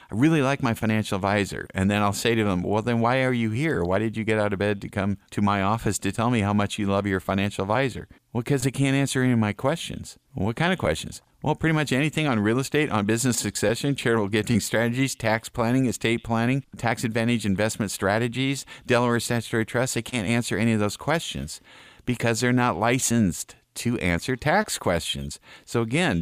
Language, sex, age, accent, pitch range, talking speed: English, male, 50-69, American, 100-125 Hz, 215 wpm